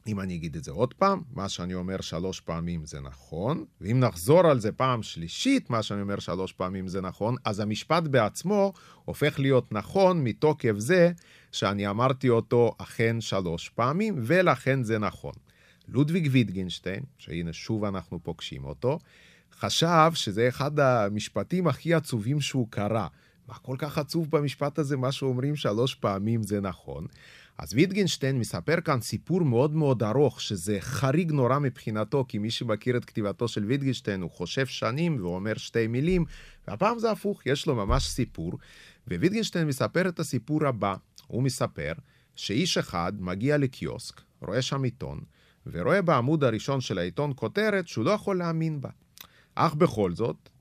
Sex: male